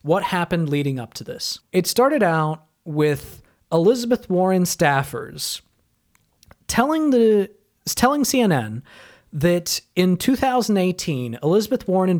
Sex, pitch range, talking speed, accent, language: male, 140-185 Hz, 115 wpm, American, English